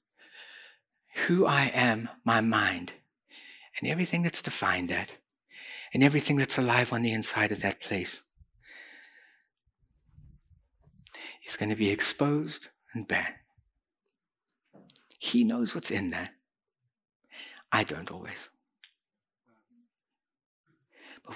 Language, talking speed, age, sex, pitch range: English, 100 wpm, 60-79, male, 105-130 Hz